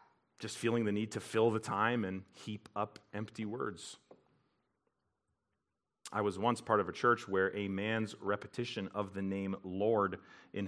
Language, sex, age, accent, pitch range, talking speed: English, male, 40-59, American, 100-125 Hz, 165 wpm